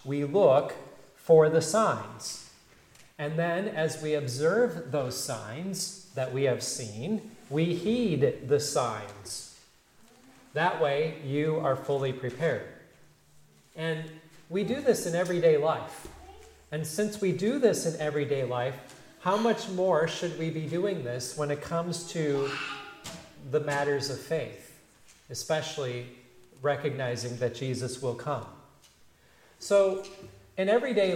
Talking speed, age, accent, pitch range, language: 125 wpm, 40-59, American, 140-180 Hz, English